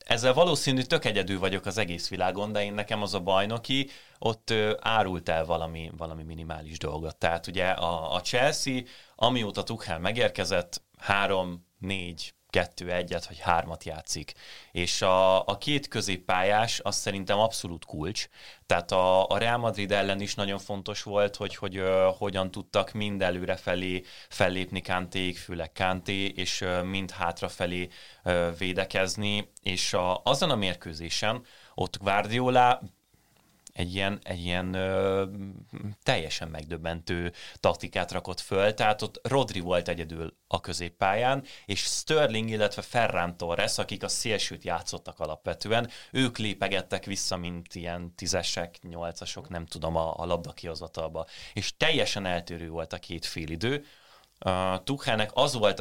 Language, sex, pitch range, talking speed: Hungarian, male, 85-105 Hz, 140 wpm